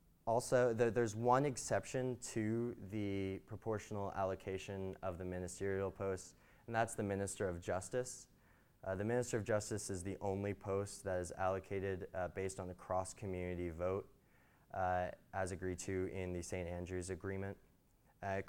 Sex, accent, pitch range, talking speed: male, American, 95-115 Hz, 155 wpm